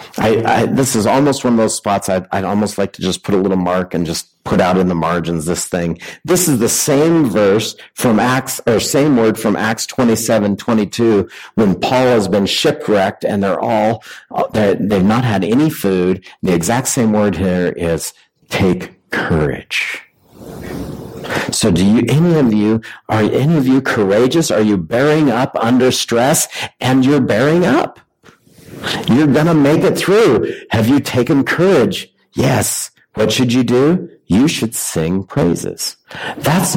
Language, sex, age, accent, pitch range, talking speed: English, male, 50-69, American, 100-140 Hz, 170 wpm